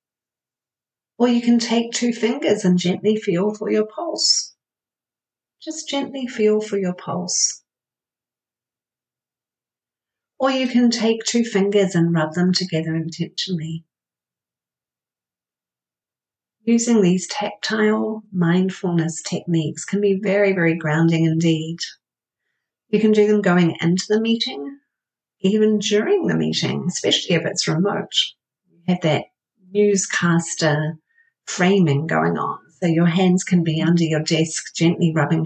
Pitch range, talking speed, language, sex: 160-215 Hz, 125 wpm, English, female